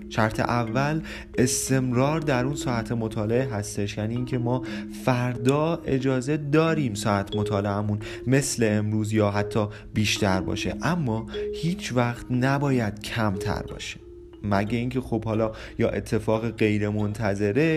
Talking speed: 120 wpm